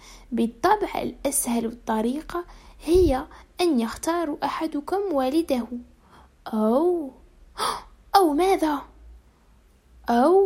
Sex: female